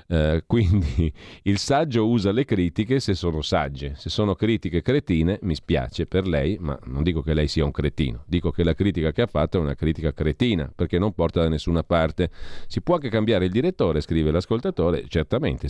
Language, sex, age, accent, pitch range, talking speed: Italian, male, 40-59, native, 85-110 Hz, 195 wpm